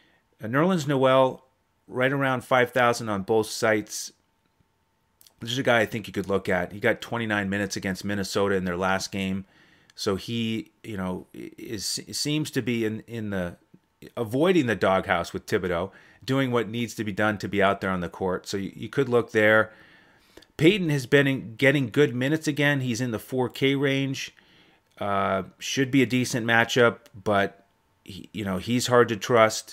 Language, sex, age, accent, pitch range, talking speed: English, male, 30-49, American, 105-130 Hz, 190 wpm